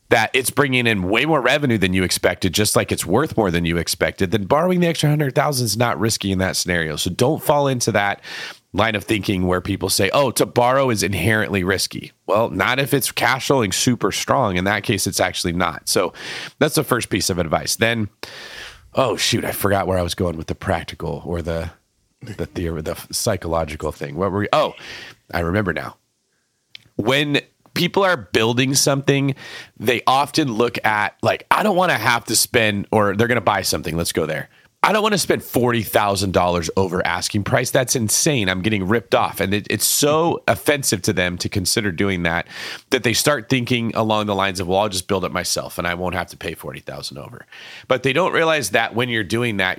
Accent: American